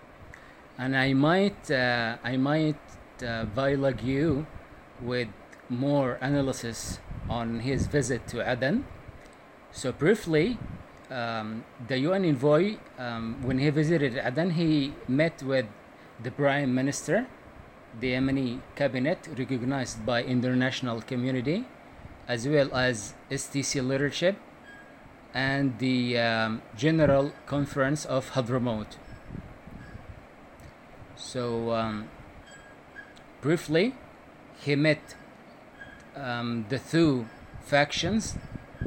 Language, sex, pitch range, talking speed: English, male, 120-145 Hz, 95 wpm